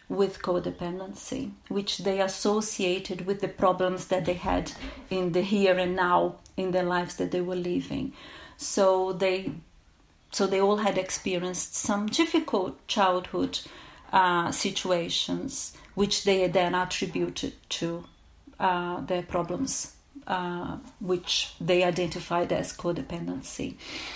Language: English